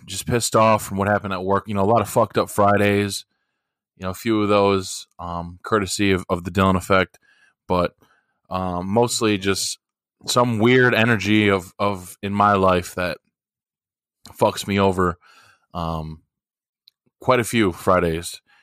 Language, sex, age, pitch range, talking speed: English, male, 20-39, 90-110 Hz, 160 wpm